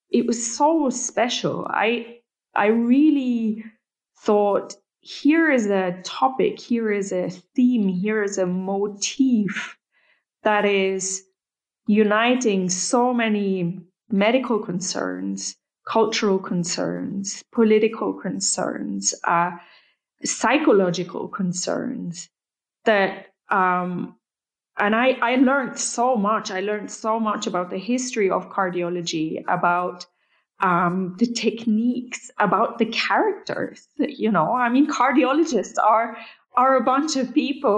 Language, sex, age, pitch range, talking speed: English, female, 20-39, 195-245 Hz, 110 wpm